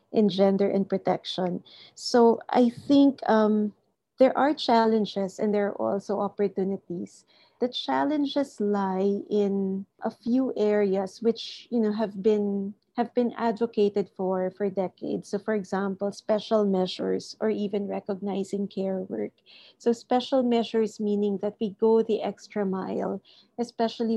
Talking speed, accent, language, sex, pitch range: 135 wpm, Filipino, English, female, 195-220 Hz